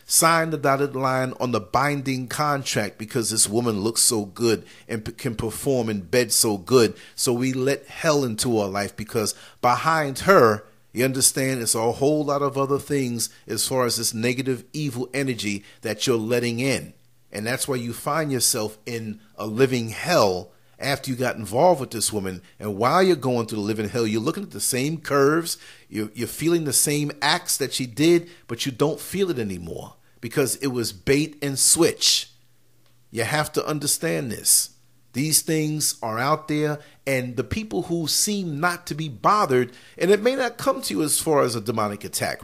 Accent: American